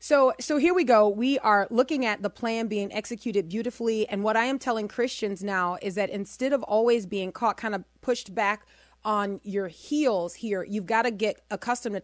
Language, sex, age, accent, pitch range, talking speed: English, female, 30-49, American, 200-235 Hz, 210 wpm